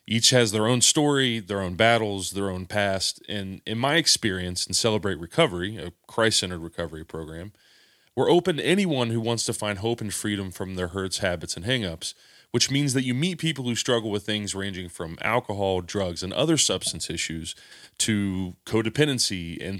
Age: 30-49